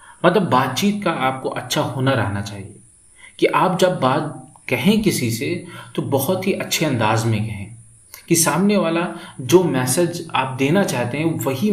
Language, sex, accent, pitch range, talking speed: Hindi, male, native, 120-170 Hz, 165 wpm